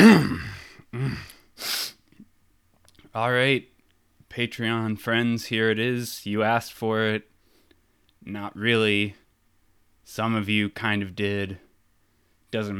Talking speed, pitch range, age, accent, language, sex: 90 wpm, 95-110 Hz, 20-39, American, English, male